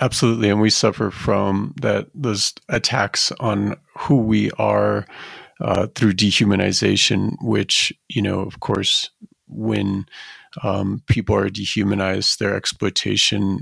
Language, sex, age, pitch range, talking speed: English, male, 40-59, 100-115 Hz, 120 wpm